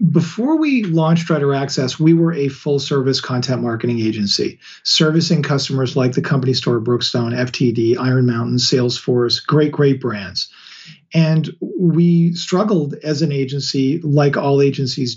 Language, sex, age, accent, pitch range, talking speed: English, male, 40-59, American, 135-170 Hz, 140 wpm